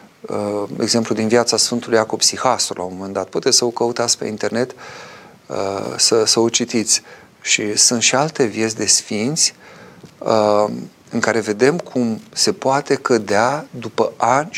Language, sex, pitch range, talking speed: Romanian, male, 105-130 Hz, 155 wpm